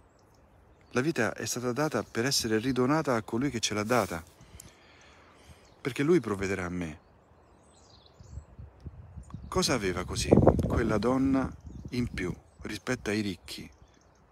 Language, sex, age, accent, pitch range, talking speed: Italian, male, 50-69, native, 85-115 Hz, 120 wpm